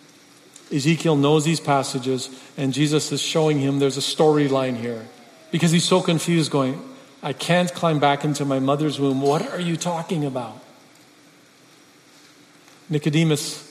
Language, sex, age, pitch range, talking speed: English, male, 40-59, 140-160 Hz, 140 wpm